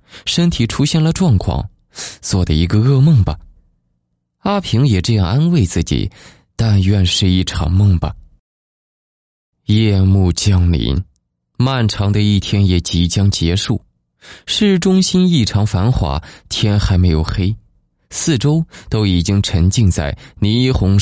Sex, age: male, 20-39